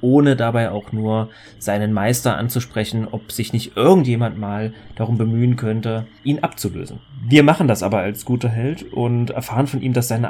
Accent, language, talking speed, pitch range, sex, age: German, German, 175 wpm, 110-140 Hz, male, 30-49